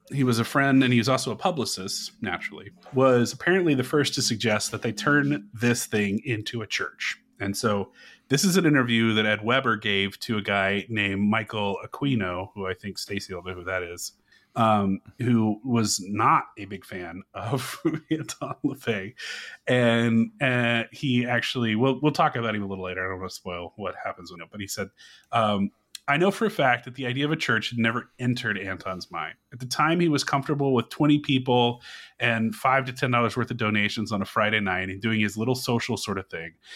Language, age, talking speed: English, 30-49, 215 wpm